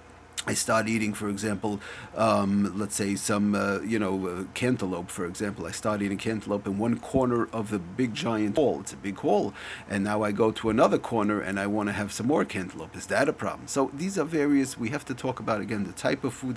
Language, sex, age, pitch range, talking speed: English, male, 40-59, 100-115 Hz, 235 wpm